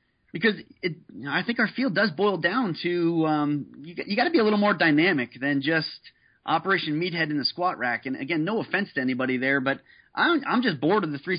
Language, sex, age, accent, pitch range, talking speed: English, male, 30-49, American, 140-185 Hz, 235 wpm